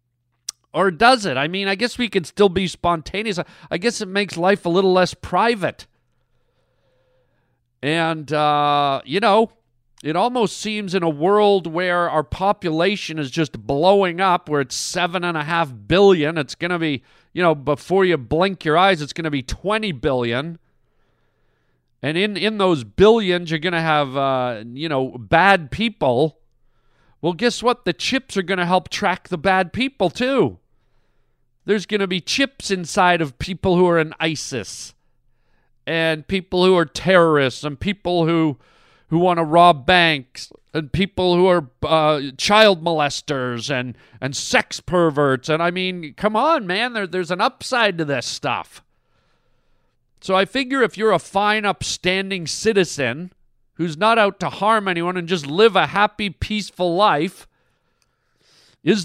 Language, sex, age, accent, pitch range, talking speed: English, male, 50-69, American, 145-195 Hz, 160 wpm